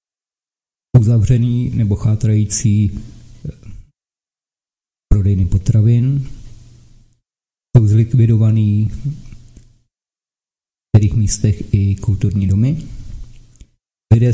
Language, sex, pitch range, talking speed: Czech, male, 110-125 Hz, 55 wpm